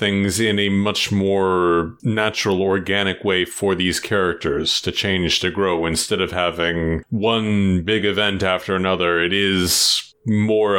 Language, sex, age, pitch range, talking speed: English, male, 30-49, 90-115 Hz, 145 wpm